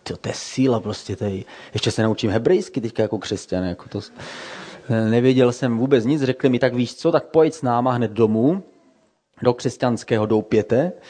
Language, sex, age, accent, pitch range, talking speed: Czech, male, 30-49, native, 105-135 Hz, 180 wpm